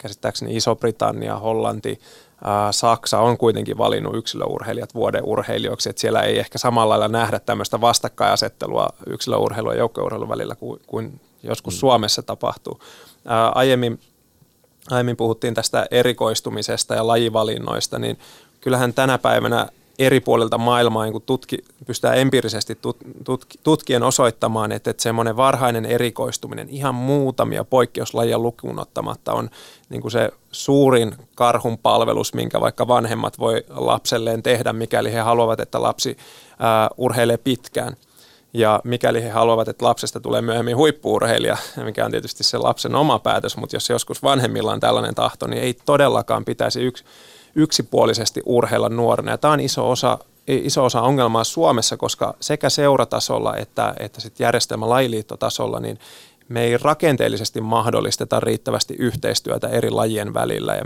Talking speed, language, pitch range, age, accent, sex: 135 wpm, Finnish, 115-130 Hz, 30-49, native, male